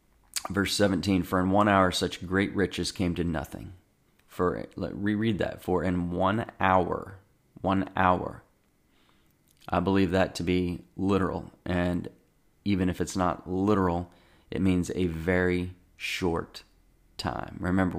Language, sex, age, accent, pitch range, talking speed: English, male, 30-49, American, 85-95 Hz, 135 wpm